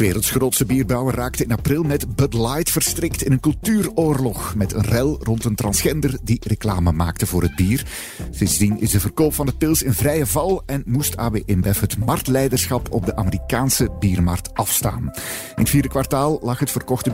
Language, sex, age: Dutch, male, 50-69